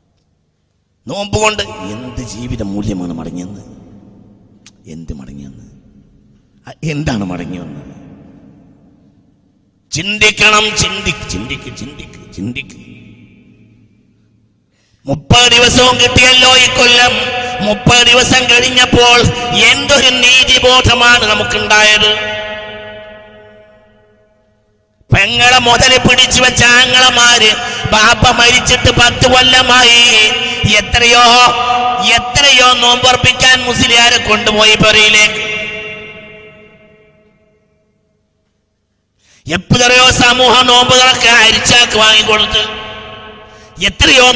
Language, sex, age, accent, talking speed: Malayalam, male, 50-69, native, 55 wpm